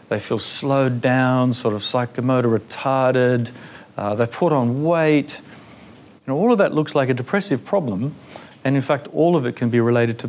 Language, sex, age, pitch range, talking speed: English, male, 40-59, 115-135 Hz, 190 wpm